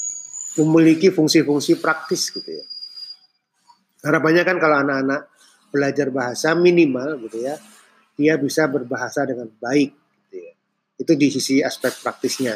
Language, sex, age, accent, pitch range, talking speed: Indonesian, male, 30-49, native, 125-155 Hz, 125 wpm